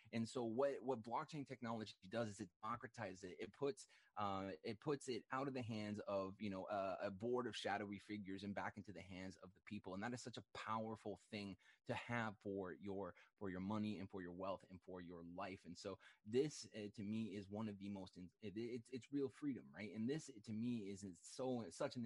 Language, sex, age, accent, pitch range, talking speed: English, male, 20-39, American, 95-115 Hz, 240 wpm